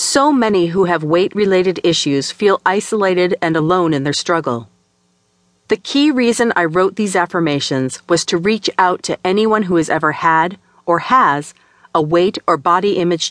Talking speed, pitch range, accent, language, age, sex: 165 wpm, 125-200 Hz, American, English, 40-59, female